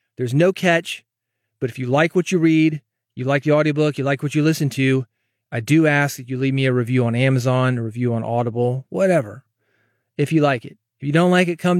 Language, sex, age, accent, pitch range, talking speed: English, male, 30-49, American, 130-160 Hz, 235 wpm